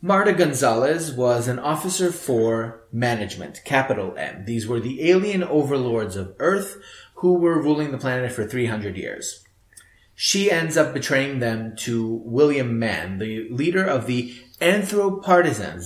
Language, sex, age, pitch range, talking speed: English, male, 30-49, 110-150 Hz, 140 wpm